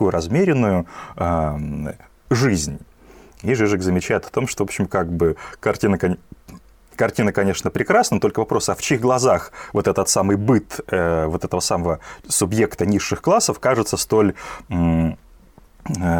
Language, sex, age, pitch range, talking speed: Russian, male, 30-49, 85-115 Hz, 140 wpm